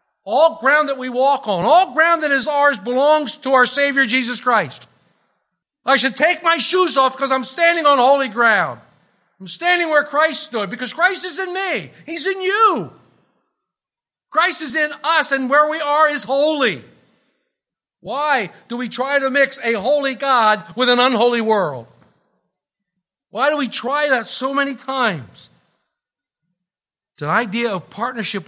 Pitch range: 165-270 Hz